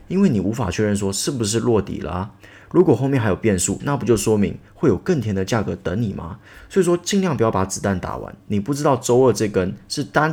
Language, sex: Chinese, male